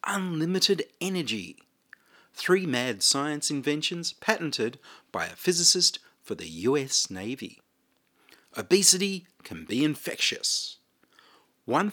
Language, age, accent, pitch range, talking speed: English, 40-59, Australian, 125-180 Hz, 95 wpm